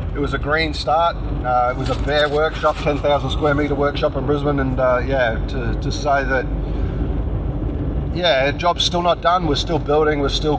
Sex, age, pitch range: male, 30-49, 125-150 Hz